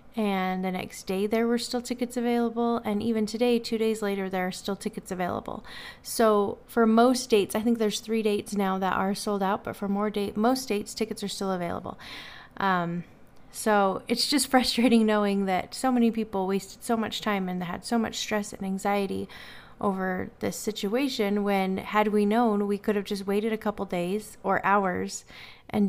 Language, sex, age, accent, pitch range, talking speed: English, female, 30-49, American, 195-235 Hz, 190 wpm